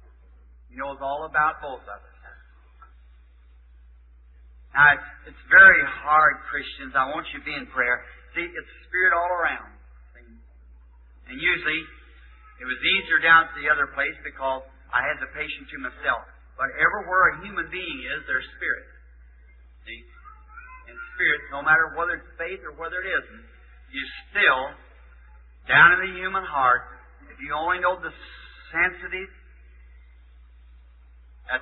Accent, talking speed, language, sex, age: American, 145 wpm, English, male, 40-59